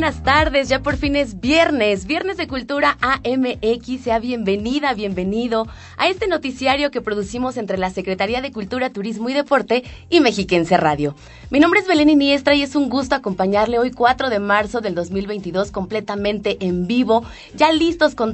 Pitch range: 200-275 Hz